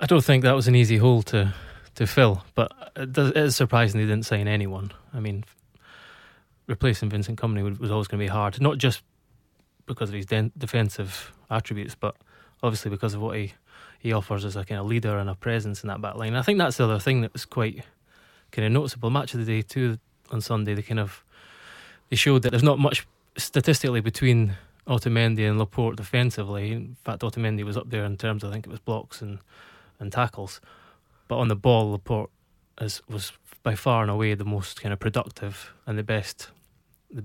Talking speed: 215 wpm